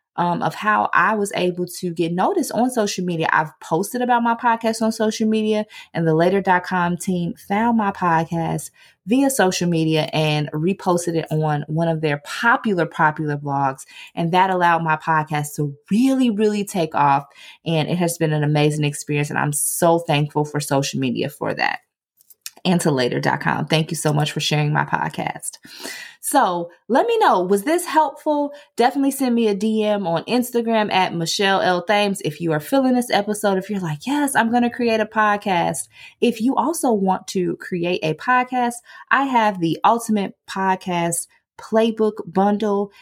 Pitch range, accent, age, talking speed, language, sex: 160-220 Hz, American, 20-39, 175 wpm, English, female